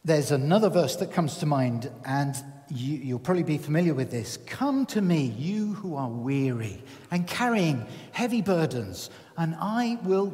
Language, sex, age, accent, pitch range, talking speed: English, male, 50-69, British, 135-195 Hz, 165 wpm